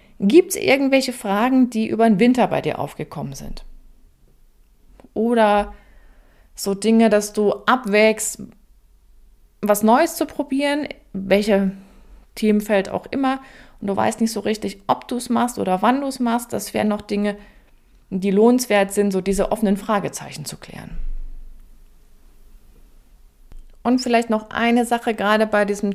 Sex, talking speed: female, 145 wpm